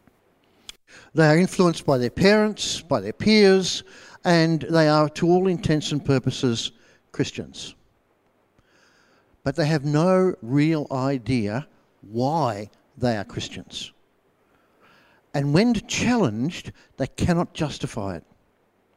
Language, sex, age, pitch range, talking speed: English, male, 60-79, 135-185 Hz, 110 wpm